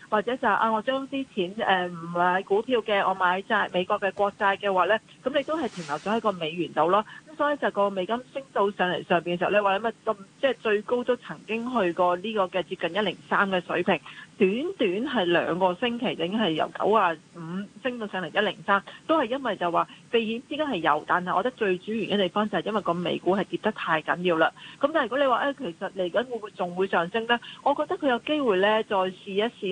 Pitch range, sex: 180-230 Hz, female